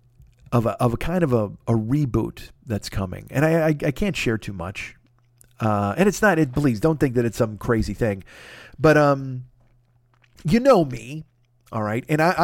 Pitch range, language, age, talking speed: 120-160 Hz, English, 40-59, 200 wpm